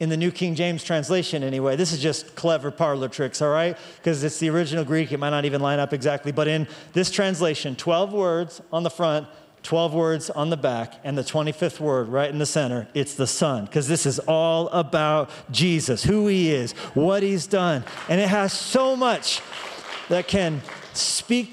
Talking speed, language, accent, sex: 200 wpm, English, American, male